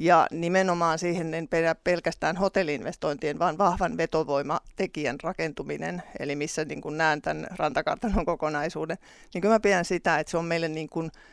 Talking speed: 155 wpm